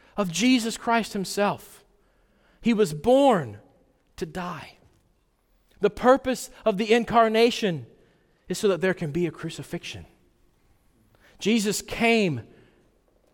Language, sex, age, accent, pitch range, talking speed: English, male, 40-59, American, 140-195 Hz, 110 wpm